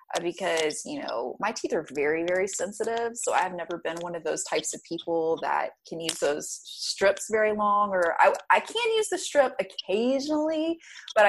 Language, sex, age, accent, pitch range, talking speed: English, female, 30-49, American, 180-260 Hz, 185 wpm